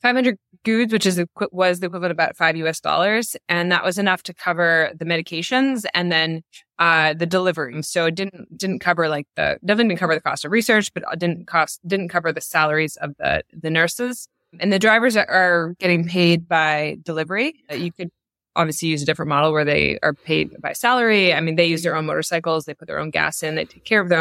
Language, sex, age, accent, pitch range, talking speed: English, female, 20-39, American, 160-190 Hz, 225 wpm